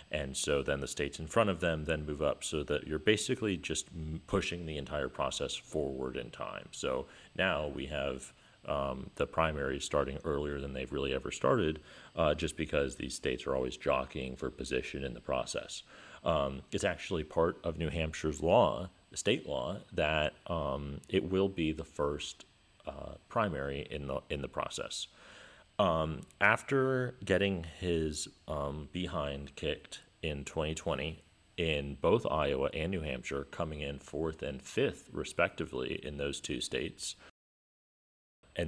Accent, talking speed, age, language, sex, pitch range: American, 160 wpm, 40-59, English, male, 70-85 Hz